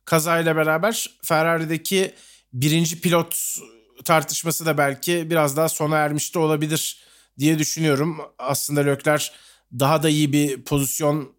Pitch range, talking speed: 140-180 Hz, 120 wpm